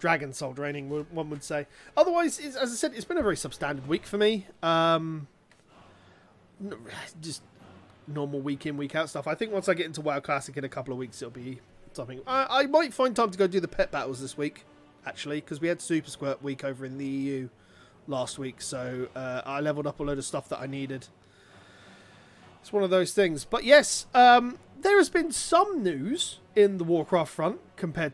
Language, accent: English, British